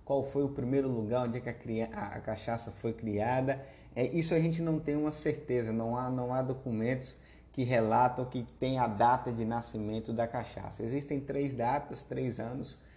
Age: 20-39